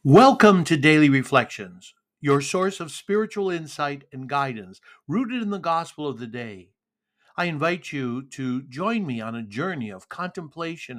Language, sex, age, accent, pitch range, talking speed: English, male, 60-79, American, 130-175 Hz, 160 wpm